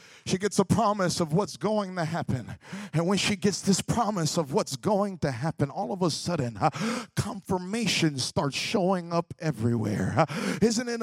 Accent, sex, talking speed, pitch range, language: American, male, 180 wpm, 170-225 Hz, English